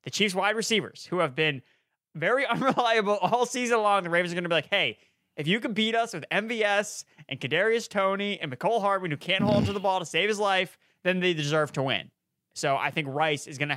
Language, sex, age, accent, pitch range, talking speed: English, male, 20-39, American, 135-170 Hz, 240 wpm